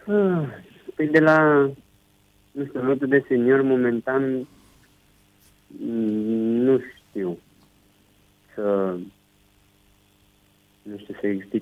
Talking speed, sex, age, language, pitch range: 75 wpm, male, 50-69, Romanian, 100-125 Hz